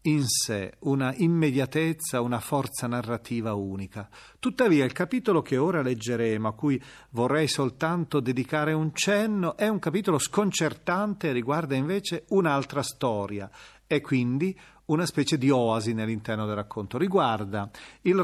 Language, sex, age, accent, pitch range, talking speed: Italian, male, 40-59, native, 120-180 Hz, 130 wpm